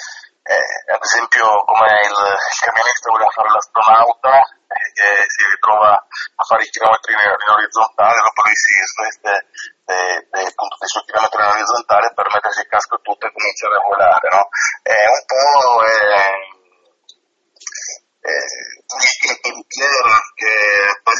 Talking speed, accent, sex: 130 wpm, native, male